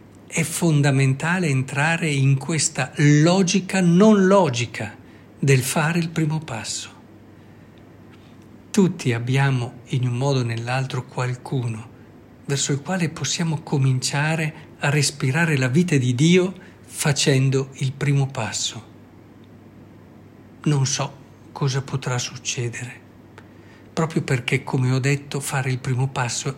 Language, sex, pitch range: Italian, male, 120-150 Hz